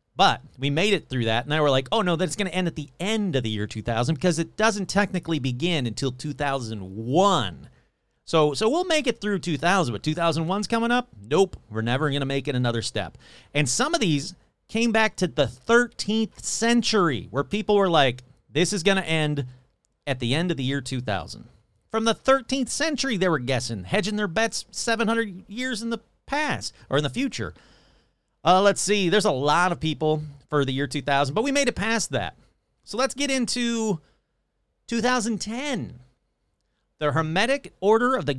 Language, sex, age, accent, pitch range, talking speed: English, male, 40-59, American, 135-210 Hz, 190 wpm